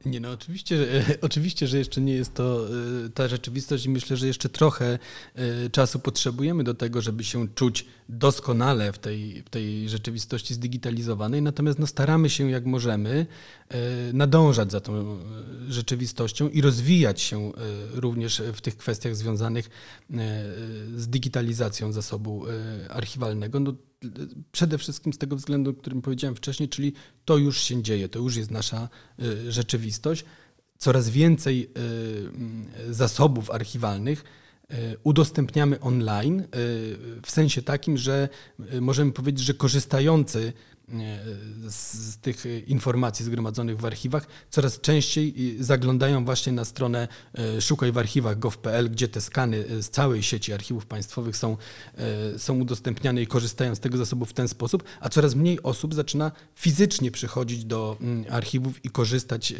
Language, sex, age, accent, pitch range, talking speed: Polish, male, 40-59, native, 115-140 Hz, 130 wpm